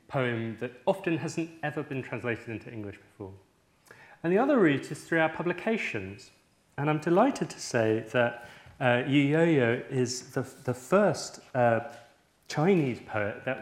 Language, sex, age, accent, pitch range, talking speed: English, male, 30-49, British, 115-140 Hz, 160 wpm